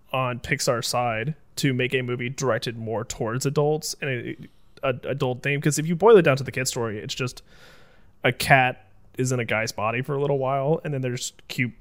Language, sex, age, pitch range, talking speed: English, male, 20-39, 125-155 Hz, 220 wpm